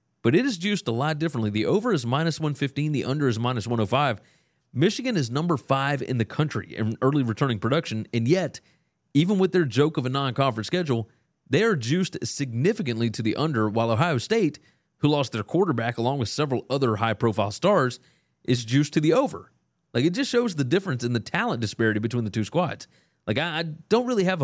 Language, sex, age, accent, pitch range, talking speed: English, male, 30-49, American, 110-155 Hz, 200 wpm